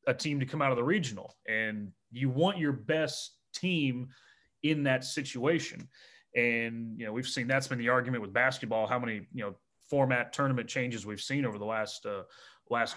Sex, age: male, 30-49